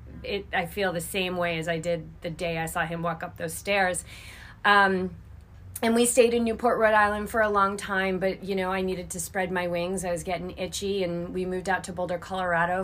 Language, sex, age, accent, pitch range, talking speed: English, female, 30-49, American, 170-190 Hz, 235 wpm